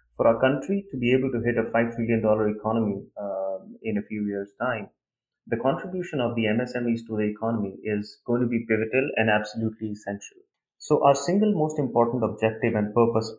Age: 30-49